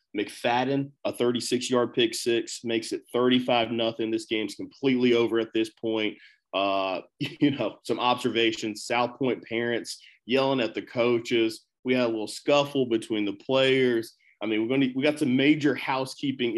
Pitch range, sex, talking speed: 110-125 Hz, male, 165 wpm